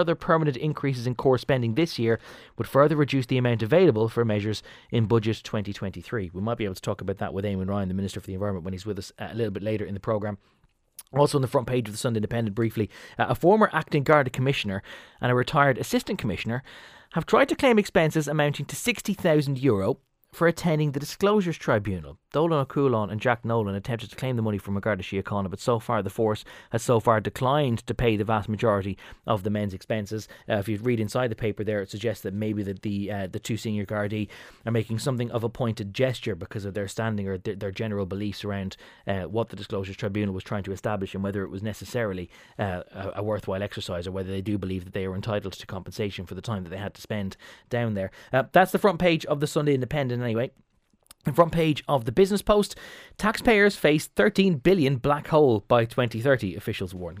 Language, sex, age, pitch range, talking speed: English, male, 20-39, 100-145 Hz, 220 wpm